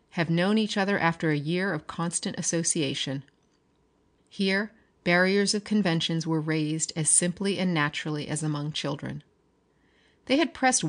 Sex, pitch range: female, 160-215 Hz